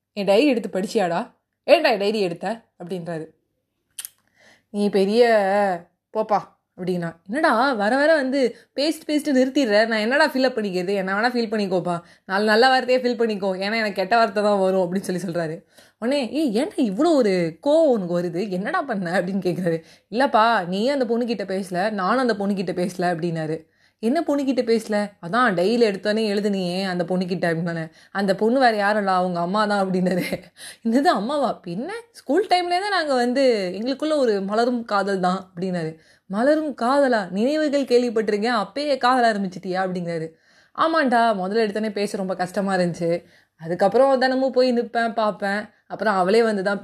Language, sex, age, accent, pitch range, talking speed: Tamil, female, 20-39, native, 185-245 Hz, 155 wpm